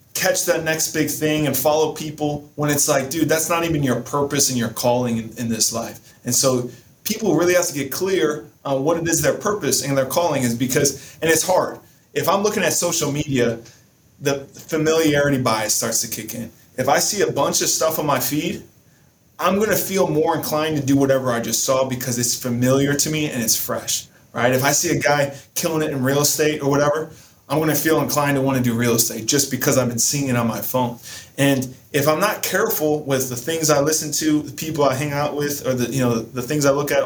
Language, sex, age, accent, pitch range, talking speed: English, male, 20-39, American, 130-160 Hz, 240 wpm